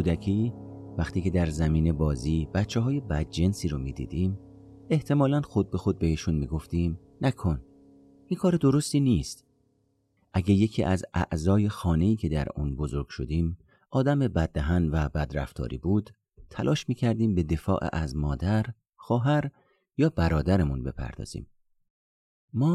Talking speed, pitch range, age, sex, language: 135 wpm, 80-105 Hz, 40-59, male, Persian